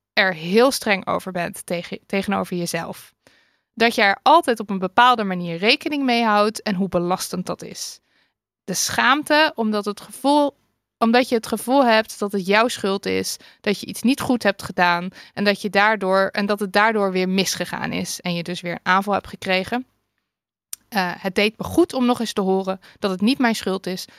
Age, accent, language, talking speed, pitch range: 20-39, Dutch, Dutch, 200 wpm, 190-225 Hz